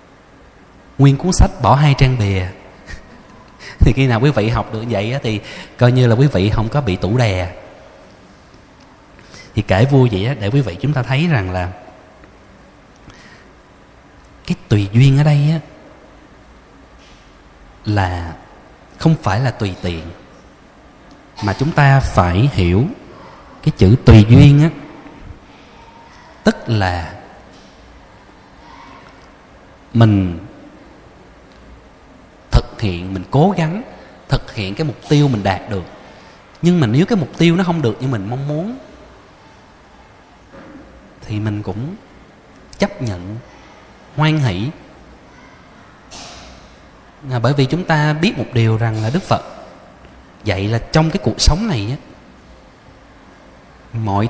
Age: 20-39